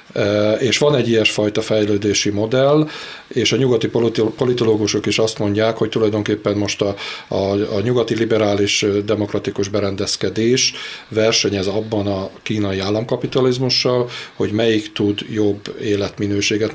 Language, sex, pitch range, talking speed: Hungarian, male, 100-115 Hz, 120 wpm